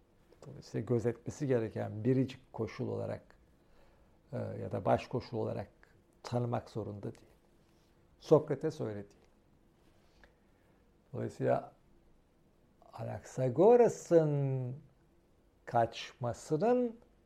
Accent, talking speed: native, 65 wpm